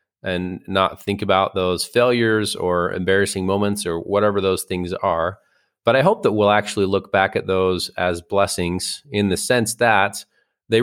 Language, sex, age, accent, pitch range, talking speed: English, male, 30-49, American, 90-100 Hz, 170 wpm